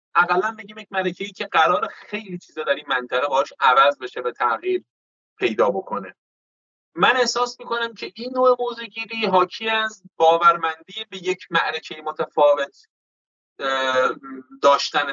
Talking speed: 130 wpm